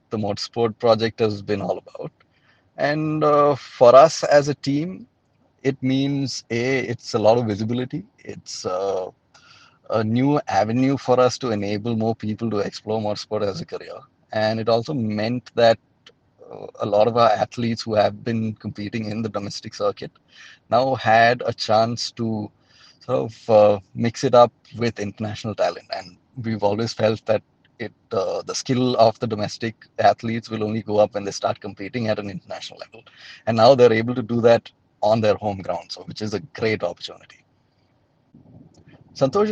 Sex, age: male, 30-49